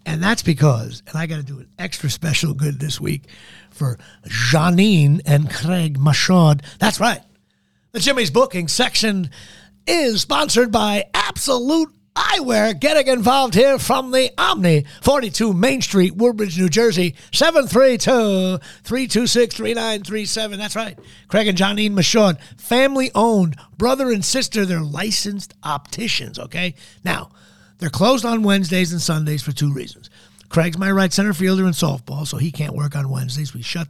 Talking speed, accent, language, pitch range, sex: 145 wpm, American, English, 160-220 Hz, male